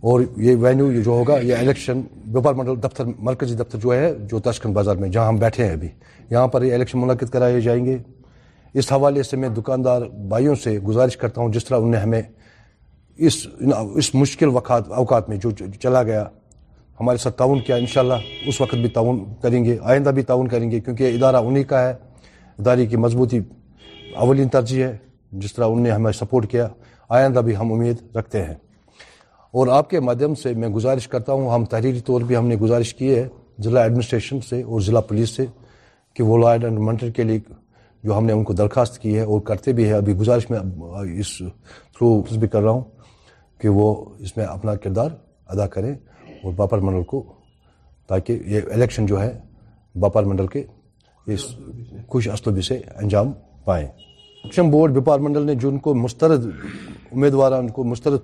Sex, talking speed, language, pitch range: male, 190 wpm, Urdu, 110-130 Hz